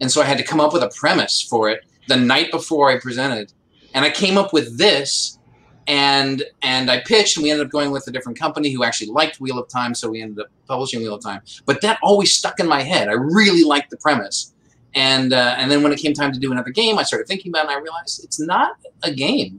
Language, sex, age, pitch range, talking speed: English, male, 30-49, 115-165 Hz, 265 wpm